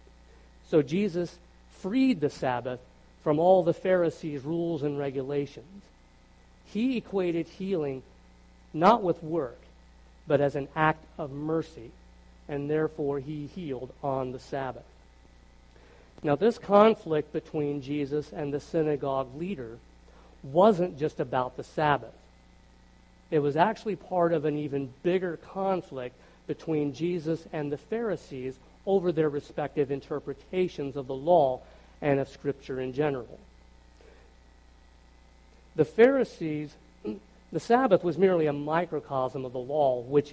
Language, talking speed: English, 125 wpm